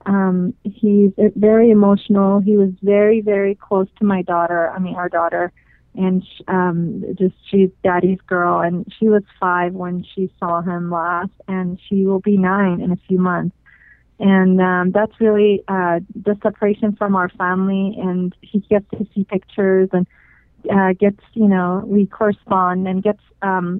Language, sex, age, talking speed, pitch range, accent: English, female, 30-49, 170 wpm, 185-205 Hz, American